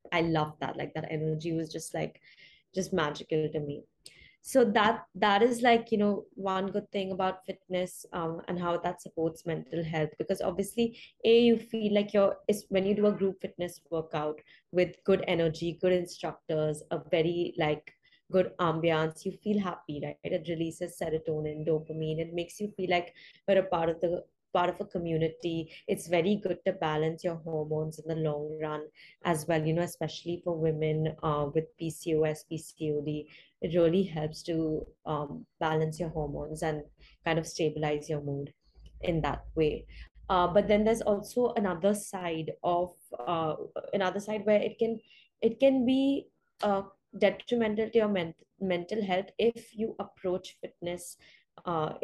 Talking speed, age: 170 wpm, 20-39